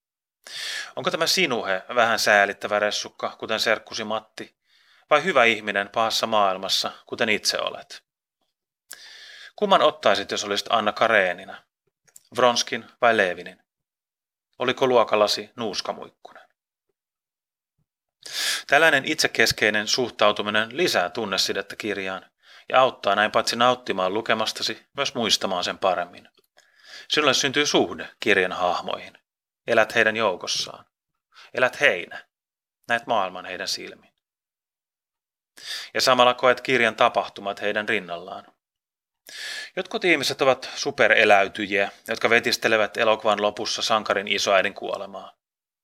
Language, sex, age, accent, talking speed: Finnish, male, 30-49, native, 100 wpm